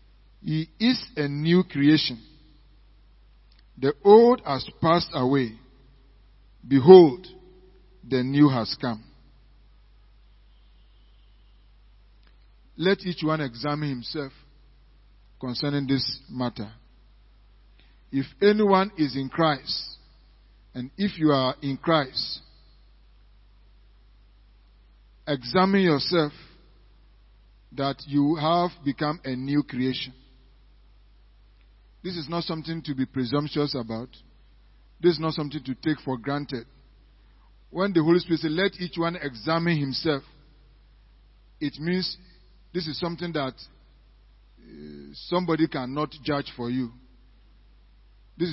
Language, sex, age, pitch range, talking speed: English, male, 50-69, 120-155 Hz, 100 wpm